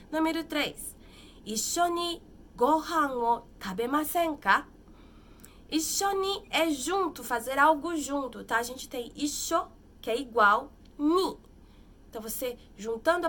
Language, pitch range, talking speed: Portuguese, 230-315 Hz, 110 wpm